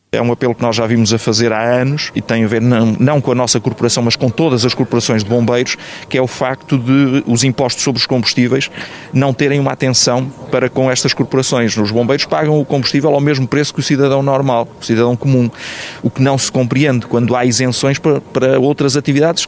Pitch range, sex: 120-140 Hz, male